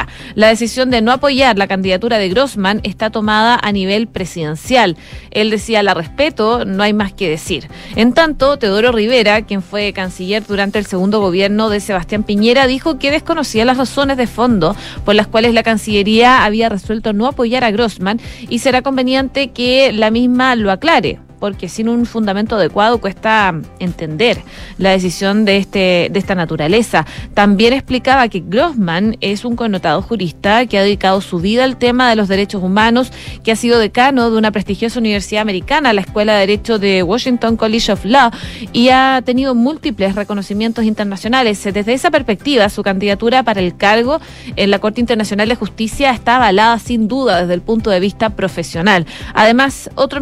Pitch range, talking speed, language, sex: 200-245 Hz, 175 wpm, Spanish, female